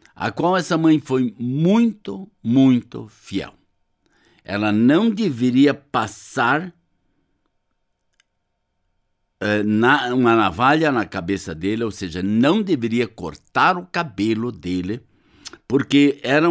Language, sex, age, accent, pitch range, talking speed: Portuguese, male, 60-79, Brazilian, 110-160 Hz, 105 wpm